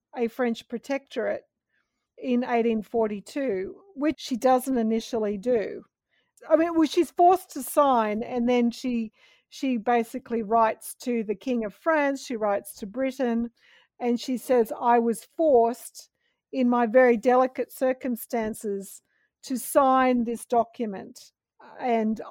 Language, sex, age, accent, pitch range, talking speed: English, female, 50-69, Australian, 225-265 Hz, 130 wpm